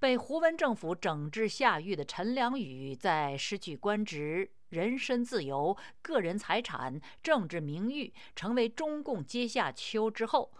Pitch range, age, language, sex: 165-245 Hz, 50-69, Chinese, female